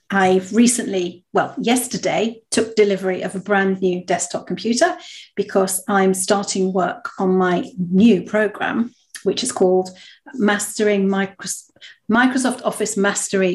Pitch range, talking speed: 185-220 Hz, 120 wpm